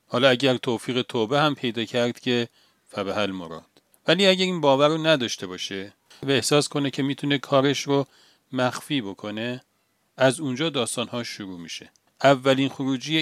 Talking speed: 150 wpm